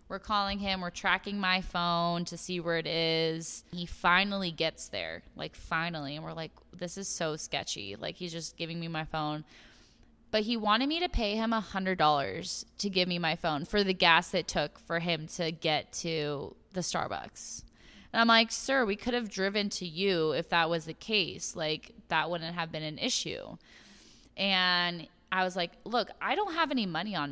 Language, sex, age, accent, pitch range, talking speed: English, female, 20-39, American, 165-210 Hz, 200 wpm